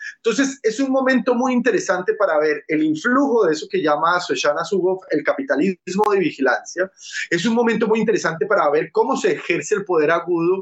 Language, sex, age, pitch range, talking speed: Spanish, male, 20-39, 180-240 Hz, 180 wpm